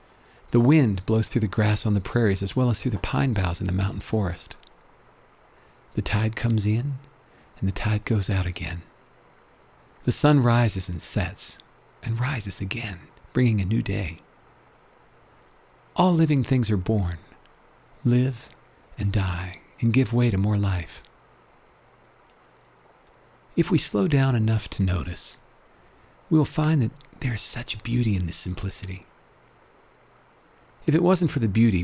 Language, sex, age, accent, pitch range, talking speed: English, male, 50-69, American, 95-130 Hz, 150 wpm